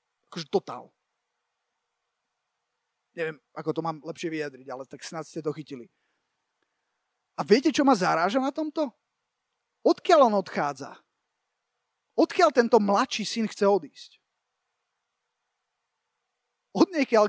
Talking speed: 110 wpm